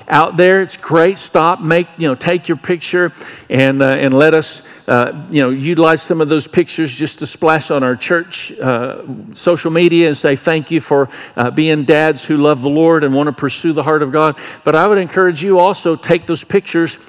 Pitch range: 155-180 Hz